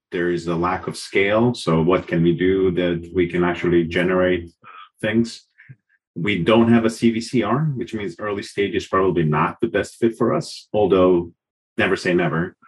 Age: 30-49